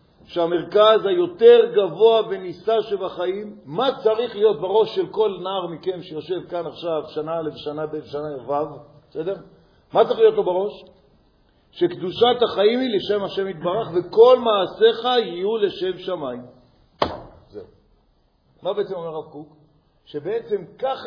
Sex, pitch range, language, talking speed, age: male, 165-225 Hz, Hebrew, 135 wpm, 50-69